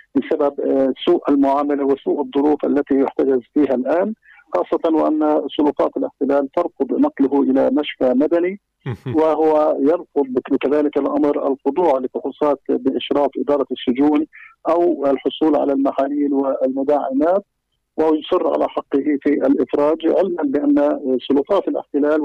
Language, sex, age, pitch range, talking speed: Arabic, male, 50-69, 140-165 Hz, 110 wpm